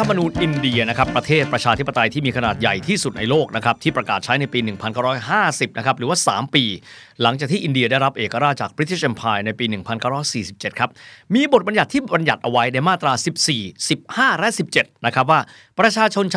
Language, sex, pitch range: Thai, male, 115-155 Hz